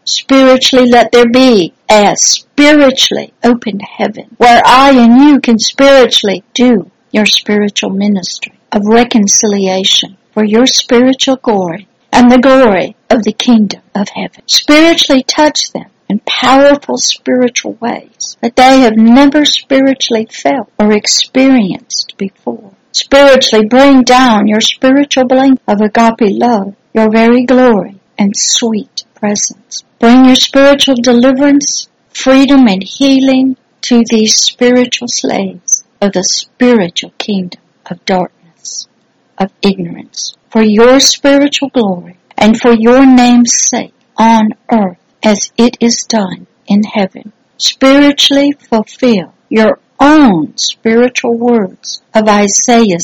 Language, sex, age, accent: English, female, 60-79, American